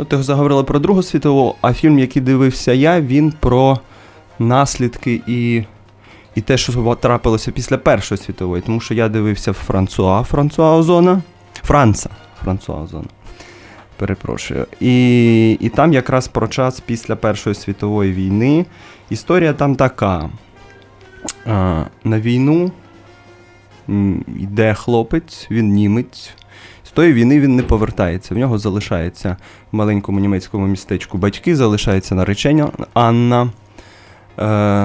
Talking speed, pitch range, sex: 110 wpm, 105-135 Hz, male